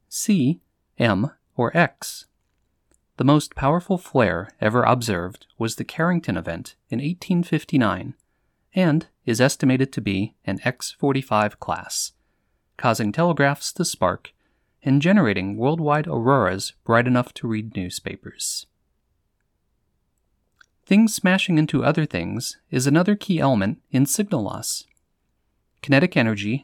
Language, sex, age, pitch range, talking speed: English, male, 30-49, 115-155 Hz, 115 wpm